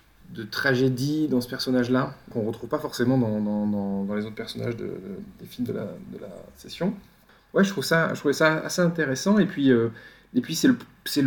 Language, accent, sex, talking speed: French, French, male, 220 wpm